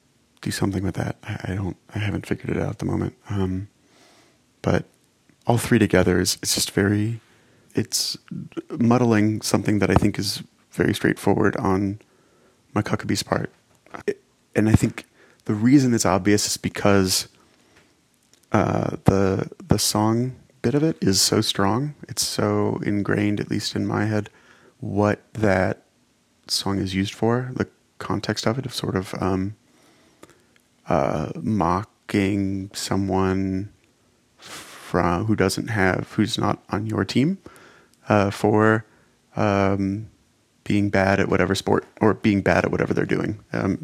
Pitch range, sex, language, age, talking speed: 95-110 Hz, male, English, 30-49, 150 wpm